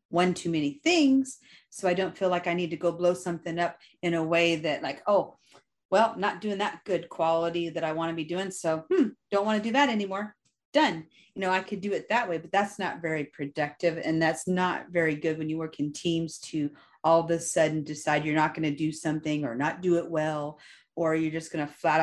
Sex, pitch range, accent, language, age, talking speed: female, 160-200 Hz, American, English, 30-49, 240 wpm